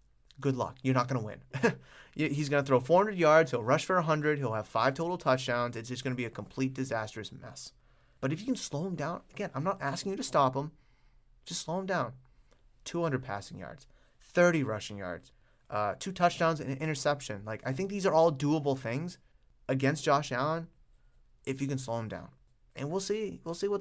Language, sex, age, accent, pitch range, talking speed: English, male, 30-49, American, 120-165 Hz, 215 wpm